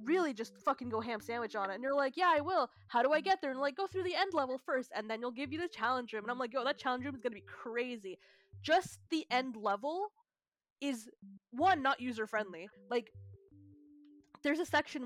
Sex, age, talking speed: female, 10-29, 230 wpm